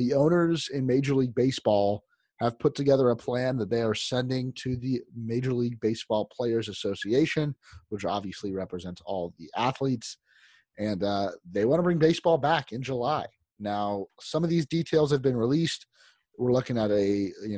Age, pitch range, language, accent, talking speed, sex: 30-49, 105-135 Hz, English, American, 175 wpm, male